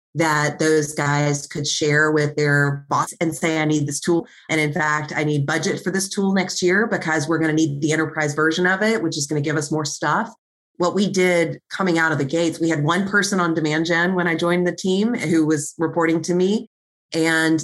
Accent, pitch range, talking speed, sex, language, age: American, 150-175 Hz, 235 wpm, female, English, 30-49